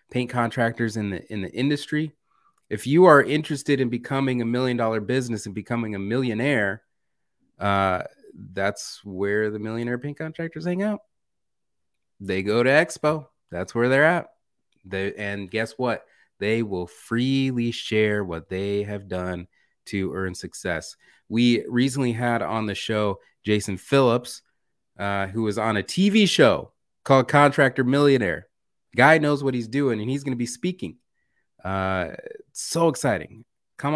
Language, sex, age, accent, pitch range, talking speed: English, male, 30-49, American, 95-130 Hz, 150 wpm